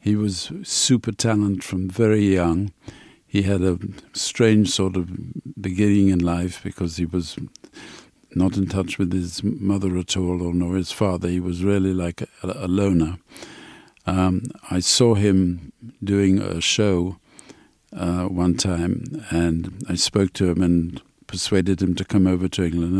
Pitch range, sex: 90-100 Hz, male